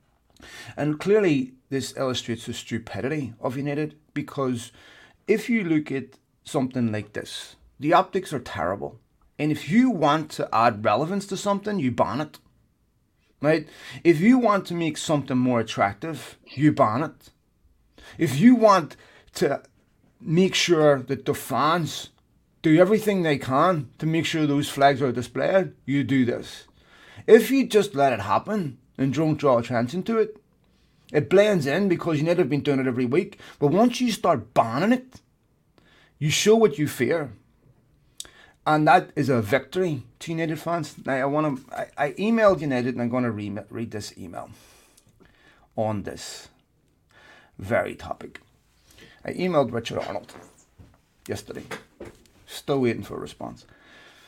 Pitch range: 125-175 Hz